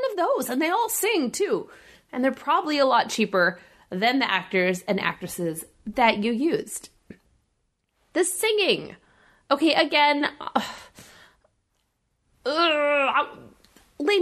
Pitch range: 220-335 Hz